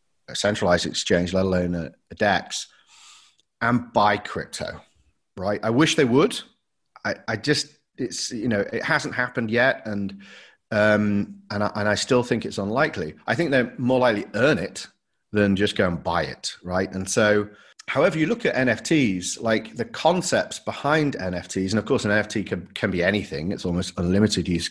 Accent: British